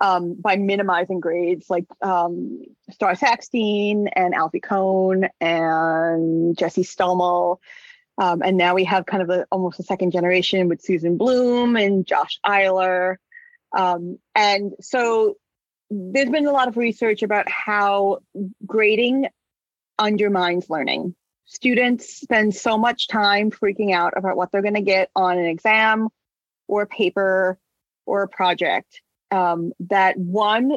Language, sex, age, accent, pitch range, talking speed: English, female, 30-49, American, 185-220 Hz, 140 wpm